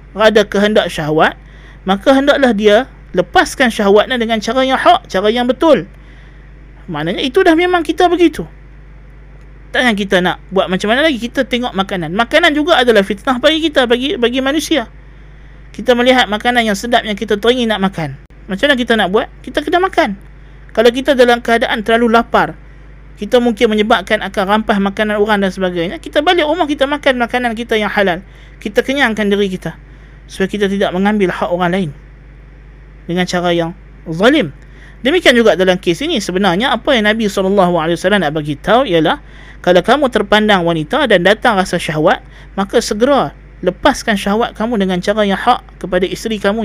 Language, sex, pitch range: Malay, male, 170-245 Hz